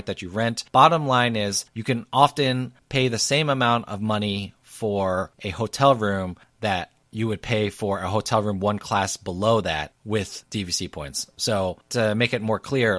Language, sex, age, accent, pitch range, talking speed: English, male, 30-49, American, 95-115 Hz, 185 wpm